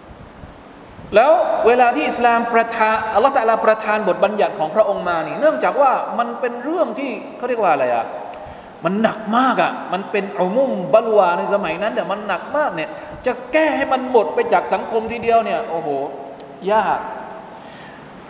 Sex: male